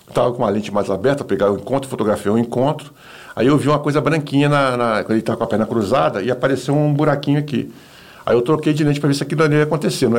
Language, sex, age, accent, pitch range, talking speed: Portuguese, male, 60-79, Brazilian, 110-145 Hz, 265 wpm